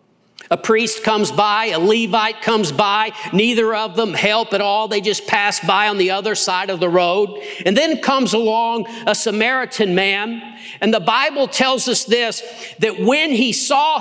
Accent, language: American, English